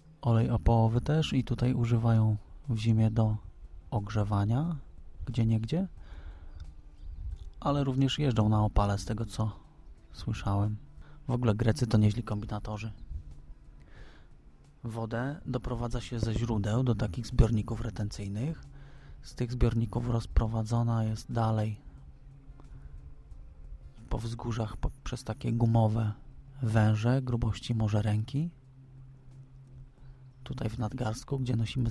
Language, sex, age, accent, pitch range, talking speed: English, male, 30-49, Polish, 110-125 Hz, 105 wpm